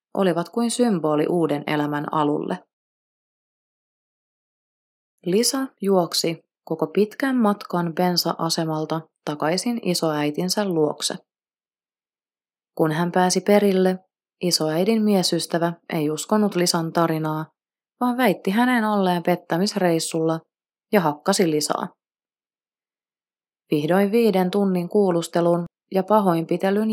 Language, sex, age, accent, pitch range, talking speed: Finnish, female, 30-49, native, 160-200 Hz, 85 wpm